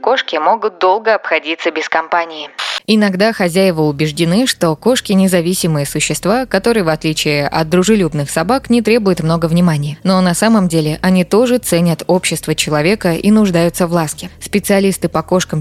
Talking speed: 150 wpm